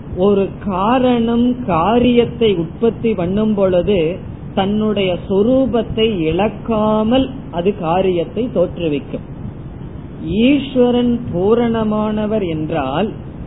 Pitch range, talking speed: 170-225 Hz, 60 wpm